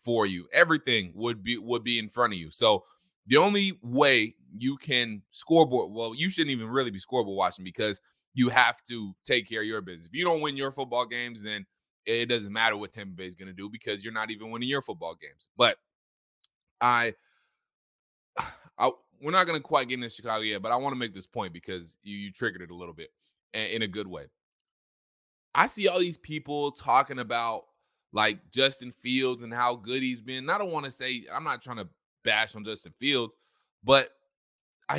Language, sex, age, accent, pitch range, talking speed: English, male, 20-39, American, 105-140 Hz, 210 wpm